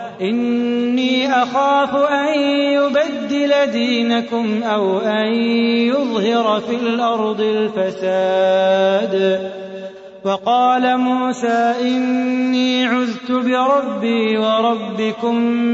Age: 30-49